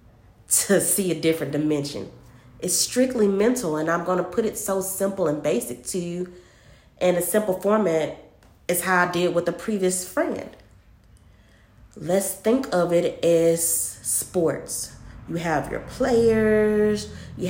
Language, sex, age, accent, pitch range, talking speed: English, female, 30-49, American, 160-200 Hz, 145 wpm